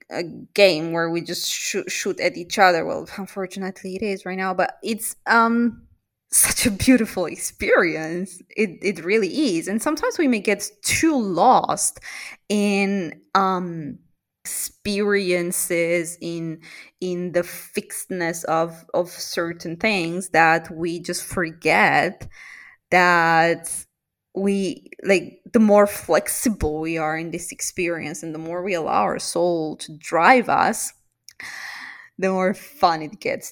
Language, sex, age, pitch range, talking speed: English, female, 20-39, 175-210 Hz, 135 wpm